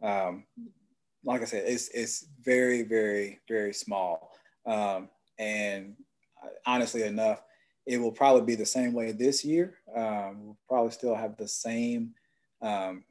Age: 20-39